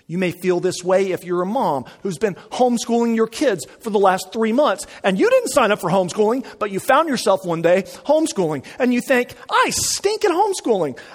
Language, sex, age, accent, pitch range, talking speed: English, male, 40-59, American, 180-275 Hz, 215 wpm